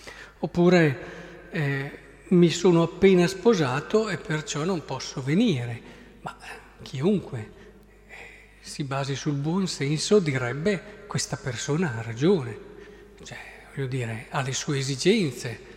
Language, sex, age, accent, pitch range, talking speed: Italian, male, 50-69, native, 140-210 Hz, 120 wpm